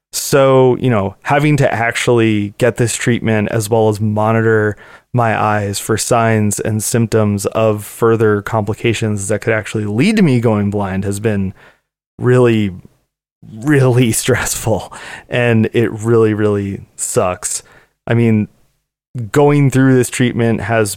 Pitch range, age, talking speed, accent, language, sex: 105-125 Hz, 20-39, 135 wpm, American, English, male